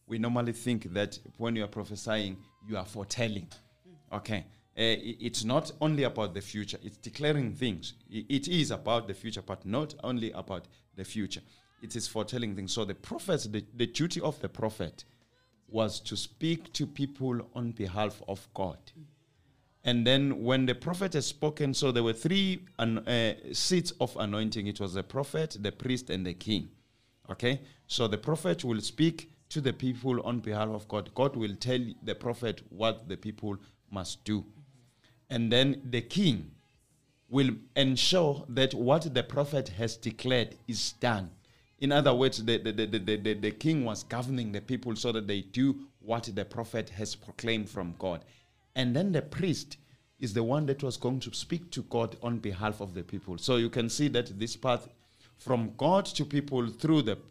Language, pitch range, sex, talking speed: English, 105-135 Hz, male, 180 wpm